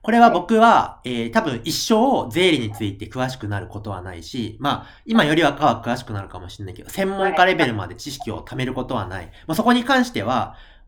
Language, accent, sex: Japanese, native, male